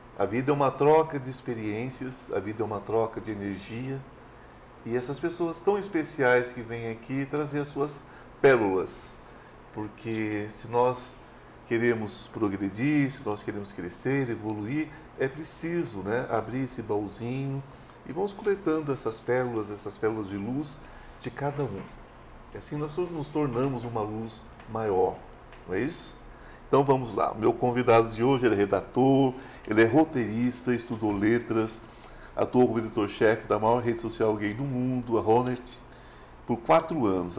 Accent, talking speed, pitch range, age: Brazilian, 150 wpm, 115-135 Hz, 50-69